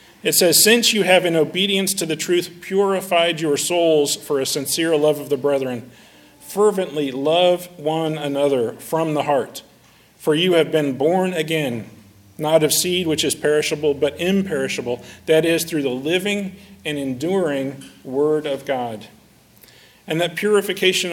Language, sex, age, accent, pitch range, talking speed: English, male, 40-59, American, 145-180 Hz, 155 wpm